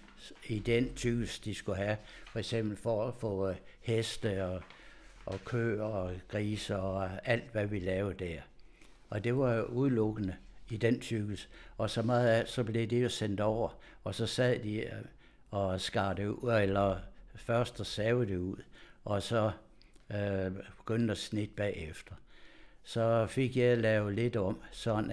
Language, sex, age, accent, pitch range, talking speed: Danish, male, 60-79, native, 95-115 Hz, 160 wpm